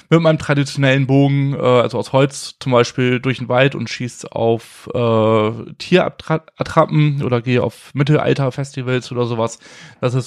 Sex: male